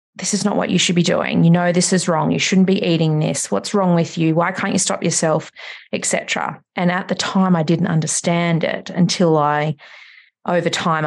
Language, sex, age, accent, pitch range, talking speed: English, female, 30-49, Australian, 160-185 Hz, 220 wpm